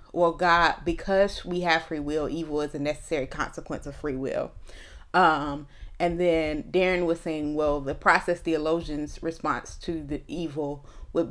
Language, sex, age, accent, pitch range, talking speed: English, female, 30-49, American, 145-170 Hz, 160 wpm